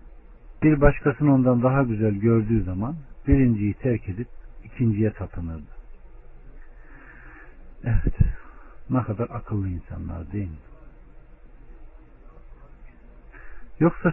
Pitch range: 90-125 Hz